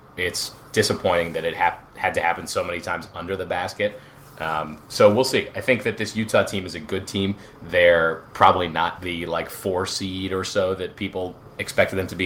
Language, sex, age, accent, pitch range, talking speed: English, male, 30-49, American, 85-105 Hz, 210 wpm